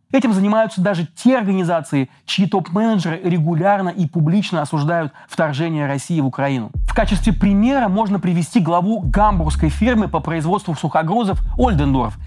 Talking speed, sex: 130 wpm, male